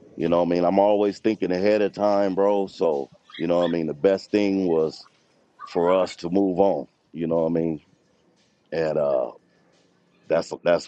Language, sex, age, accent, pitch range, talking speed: English, male, 40-59, American, 85-110 Hz, 200 wpm